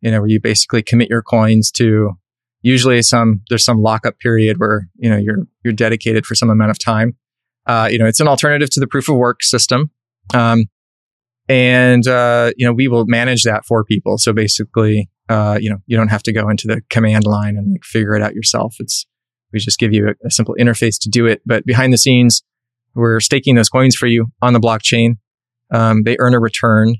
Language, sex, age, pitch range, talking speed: English, male, 20-39, 110-125 Hz, 220 wpm